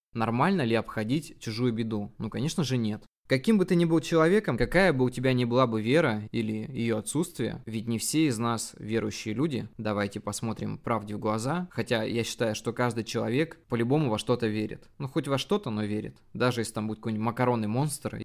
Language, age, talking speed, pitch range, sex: Russian, 20-39, 200 wpm, 110-140 Hz, male